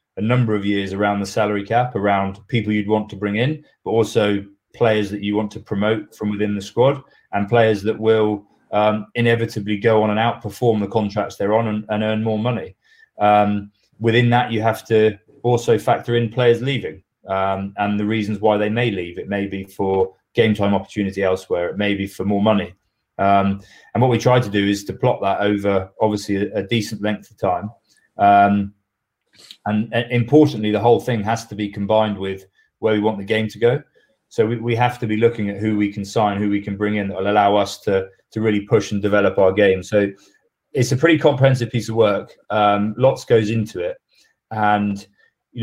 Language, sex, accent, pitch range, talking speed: English, male, British, 100-115 Hz, 215 wpm